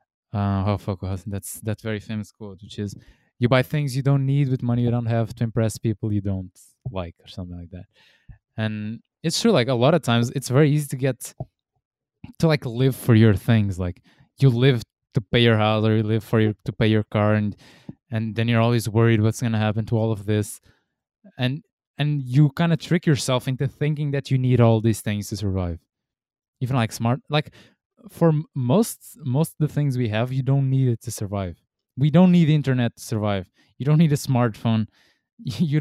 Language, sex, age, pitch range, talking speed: English, male, 20-39, 110-140 Hz, 210 wpm